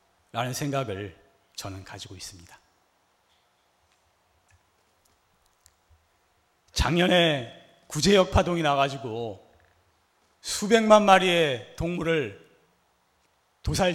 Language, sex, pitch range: Korean, male, 135-210 Hz